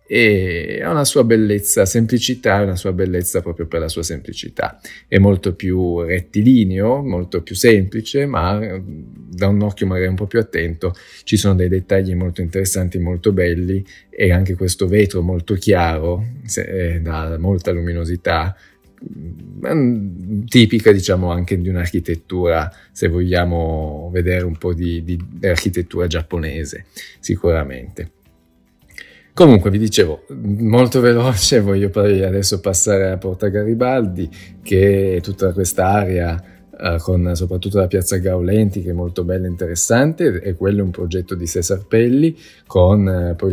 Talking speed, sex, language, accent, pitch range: 140 wpm, male, Italian, native, 90-105 Hz